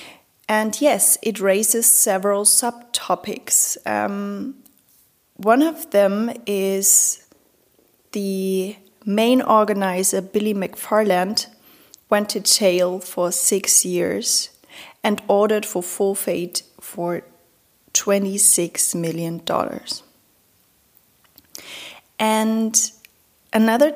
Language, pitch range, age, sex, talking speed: English, 190-220 Hz, 30-49, female, 80 wpm